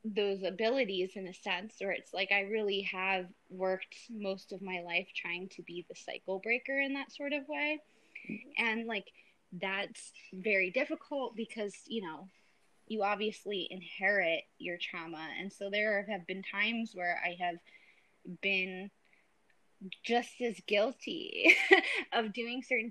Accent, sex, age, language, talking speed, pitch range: American, female, 20-39, English, 145 wpm, 190-235 Hz